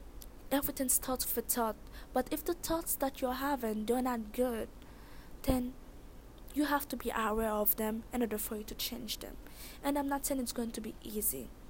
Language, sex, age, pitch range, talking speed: English, female, 20-39, 215-255 Hz, 195 wpm